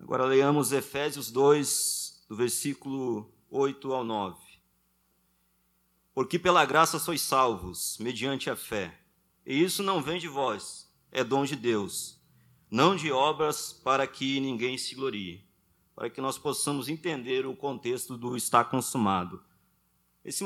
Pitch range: 125-170 Hz